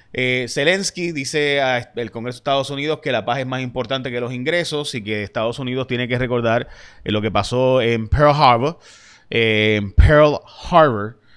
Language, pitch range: Spanish, 115-140 Hz